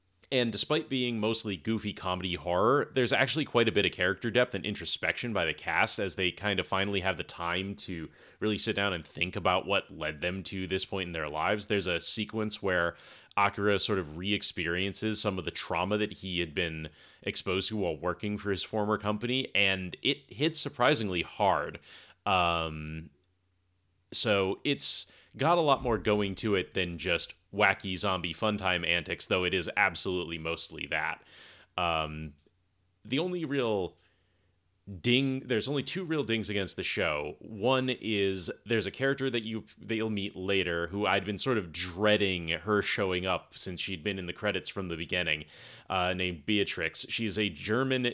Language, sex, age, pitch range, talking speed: English, male, 30-49, 90-110 Hz, 180 wpm